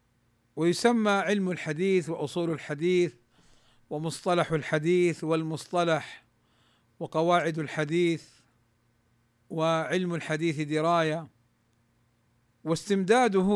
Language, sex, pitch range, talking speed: Arabic, male, 115-185 Hz, 60 wpm